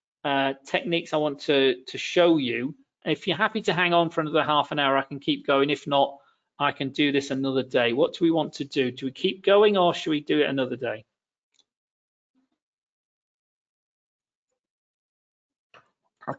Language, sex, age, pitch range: English, male, 40-59, 140-190 Hz